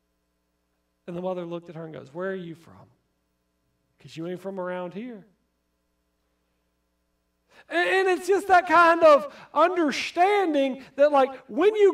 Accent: American